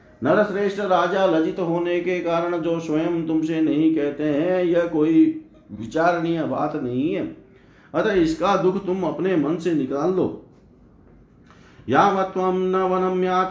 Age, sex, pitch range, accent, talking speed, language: 50-69, male, 125-175 Hz, native, 125 wpm, Hindi